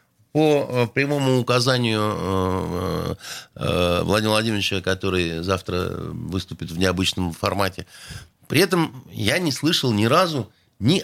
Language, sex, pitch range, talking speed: Russian, male, 95-150 Hz, 105 wpm